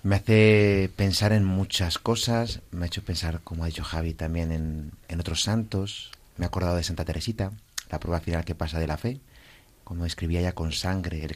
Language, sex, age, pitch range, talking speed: Spanish, male, 30-49, 85-105 Hz, 205 wpm